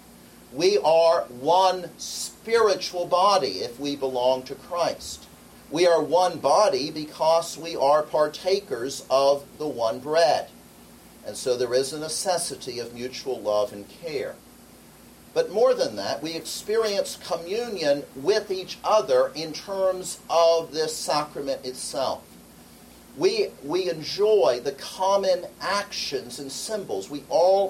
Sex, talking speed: male, 130 wpm